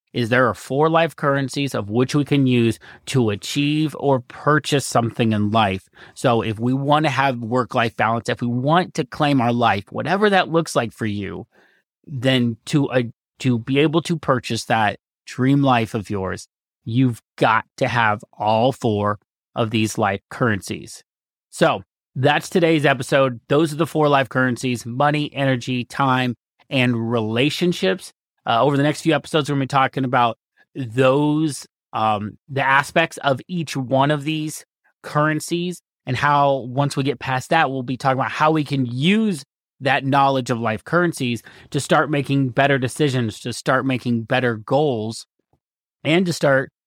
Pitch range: 120-145 Hz